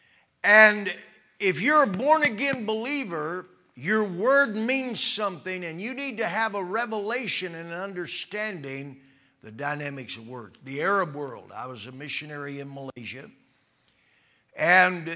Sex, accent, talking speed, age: male, American, 130 wpm, 60-79